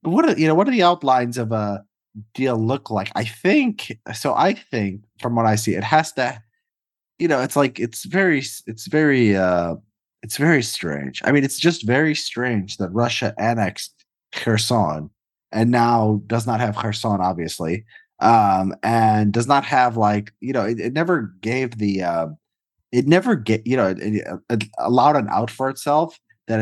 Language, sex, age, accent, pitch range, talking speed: English, male, 20-39, American, 100-125 Hz, 185 wpm